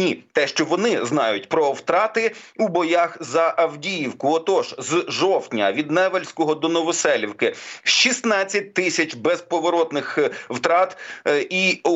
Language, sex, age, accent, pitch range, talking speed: Ukrainian, male, 40-59, native, 155-195 Hz, 115 wpm